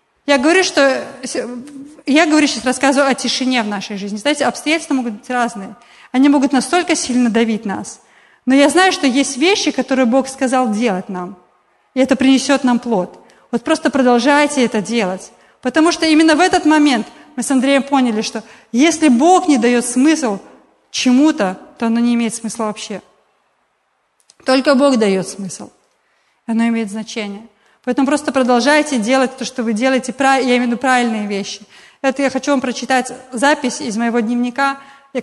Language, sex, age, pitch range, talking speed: Russian, female, 30-49, 230-275 Hz, 165 wpm